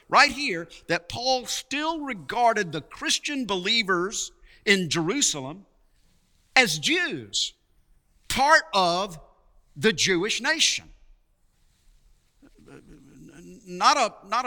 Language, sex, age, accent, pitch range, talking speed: English, male, 50-69, American, 180-270 Hz, 80 wpm